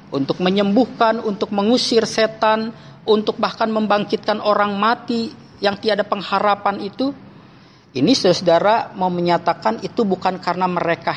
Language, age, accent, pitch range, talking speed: Indonesian, 40-59, native, 175-240 Hz, 120 wpm